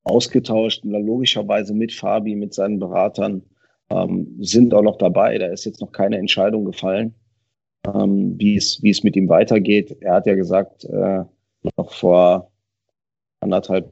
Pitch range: 95-115 Hz